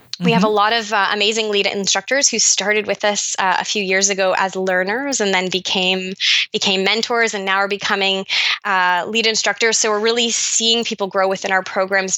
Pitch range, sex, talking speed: 195-230 Hz, female, 200 wpm